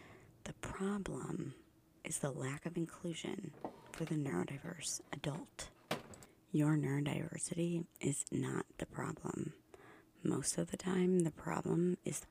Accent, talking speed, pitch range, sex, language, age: American, 120 wpm, 145-170 Hz, female, English, 30-49